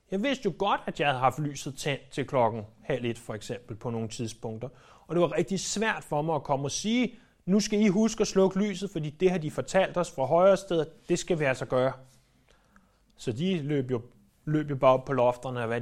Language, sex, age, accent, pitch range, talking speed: Danish, male, 30-49, native, 125-165 Hz, 245 wpm